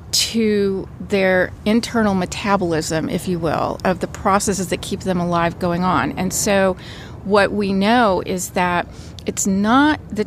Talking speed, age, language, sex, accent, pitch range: 150 wpm, 40-59, German, female, American, 180-210 Hz